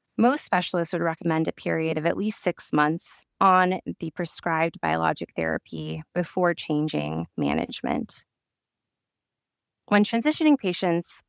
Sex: female